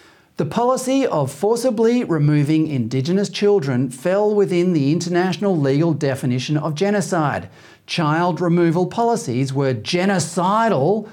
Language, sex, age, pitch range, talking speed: English, male, 40-59, 140-190 Hz, 110 wpm